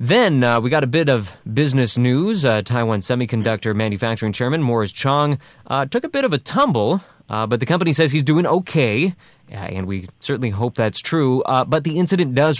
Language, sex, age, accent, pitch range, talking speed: English, male, 20-39, American, 110-145 Hz, 200 wpm